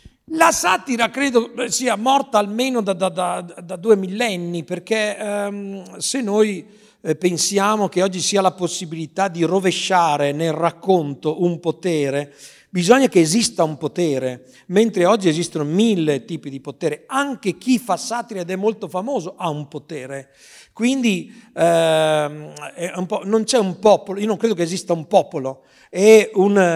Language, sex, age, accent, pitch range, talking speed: Italian, male, 50-69, native, 155-210 Hz, 150 wpm